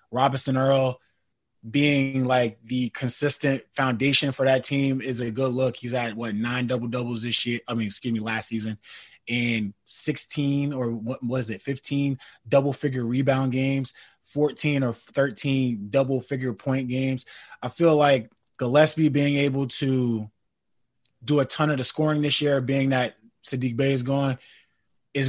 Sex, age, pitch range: male, 20-39, 120-140 Hz